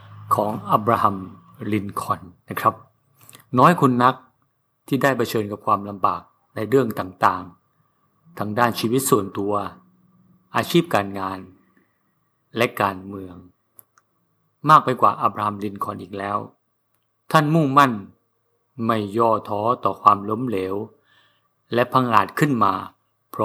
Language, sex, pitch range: Thai, male, 105-135 Hz